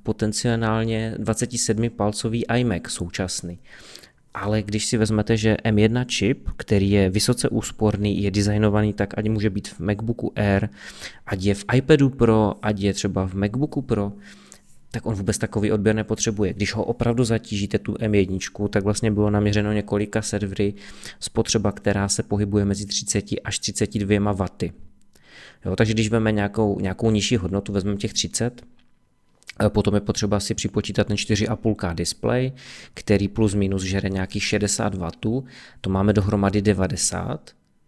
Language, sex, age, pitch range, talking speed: Czech, male, 20-39, 100-110 Hz, 145 wpm